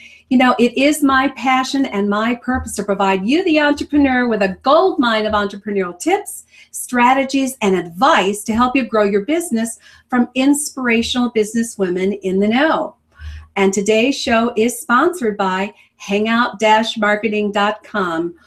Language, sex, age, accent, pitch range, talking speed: English, female, 50-69, American, 205-270 Hz, 135 wpm